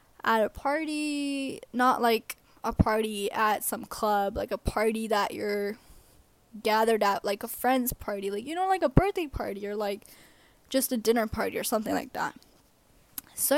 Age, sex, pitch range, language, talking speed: 10-29, female, 220-255 Hz, English, 170 wpm